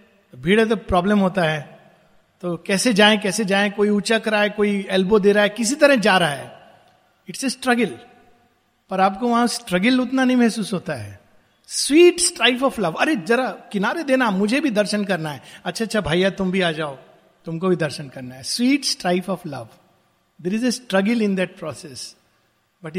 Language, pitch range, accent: Hindi, 170-230 Hz, native